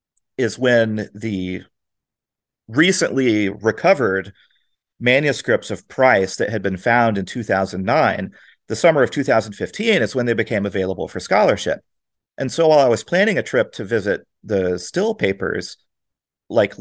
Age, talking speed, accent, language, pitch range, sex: 40-59, 140 wpm, American, English, 100-125 Hz, male